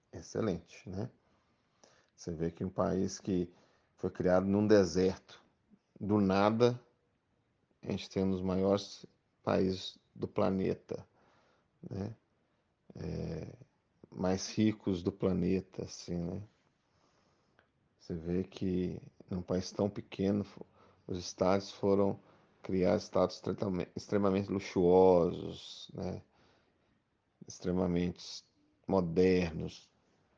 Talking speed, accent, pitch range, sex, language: 95 wpm, Brazilian, 90-105 Hz, male, Portuguese